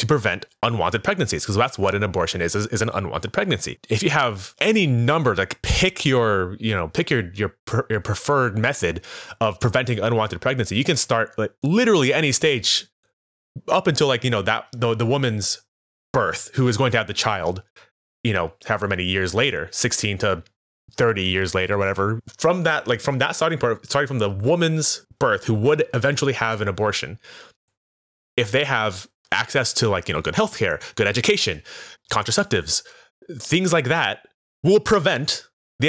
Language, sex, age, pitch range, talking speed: English, male, 20-39, 100-135 Hz, 180 wpm